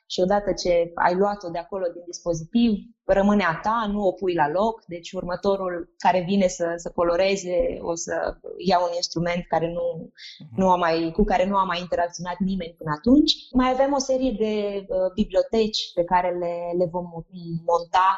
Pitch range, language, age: 175-220 Hz, Romanian, 20-39